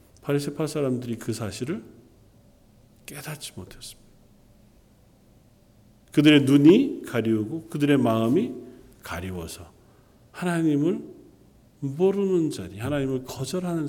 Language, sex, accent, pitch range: Korean, male, native, 115-180 Hz